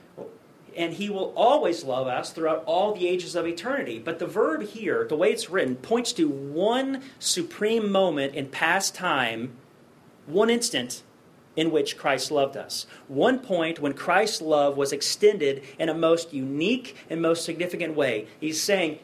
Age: 40-59